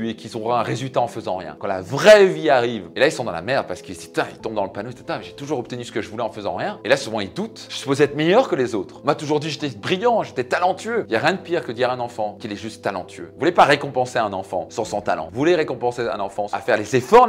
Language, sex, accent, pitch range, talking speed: French, male, French, 110-155 Hz, 325 wpm